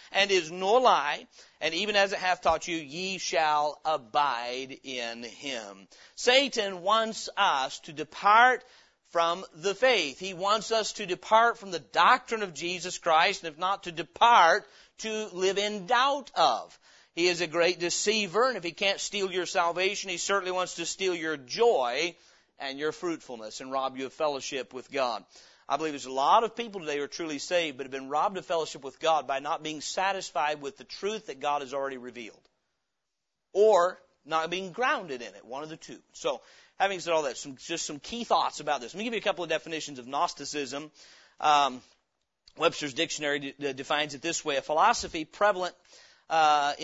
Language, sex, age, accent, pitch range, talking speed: English, male, 40-59, American, 145-195 Hz, 190 wpm